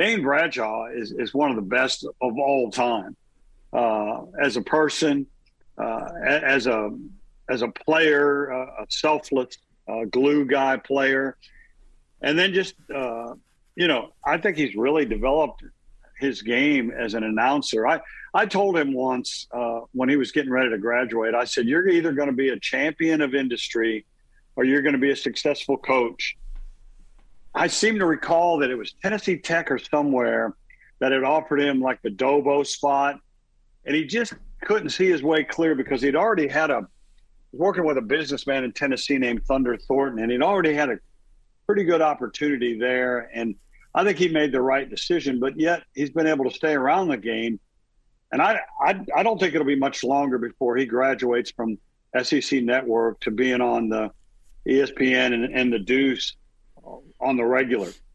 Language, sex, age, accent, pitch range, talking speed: English, male, 50-69, American, 120-150 Hz, 180 wpm